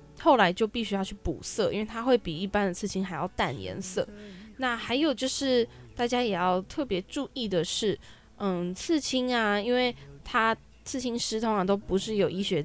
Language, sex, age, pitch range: Chinese, female, 10-29, 190-250 Hz